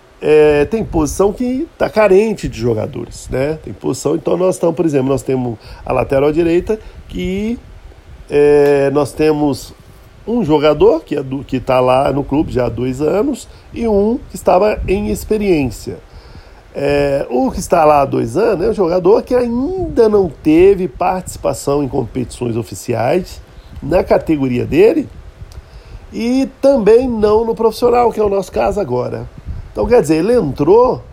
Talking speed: 155 wpm